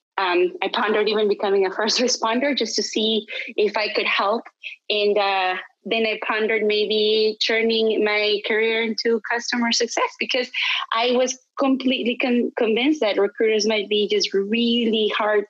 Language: English